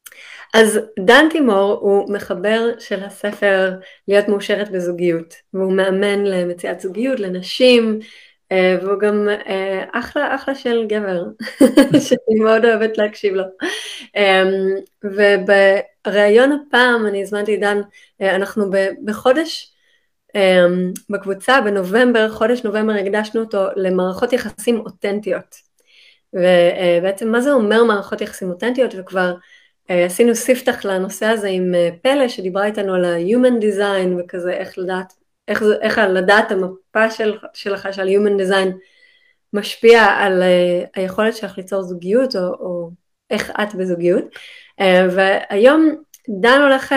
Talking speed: 115 wpm